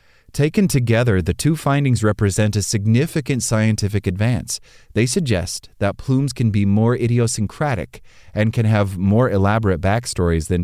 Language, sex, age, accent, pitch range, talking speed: English, male, 30-49, American, 95-125 Hz, 140 wpm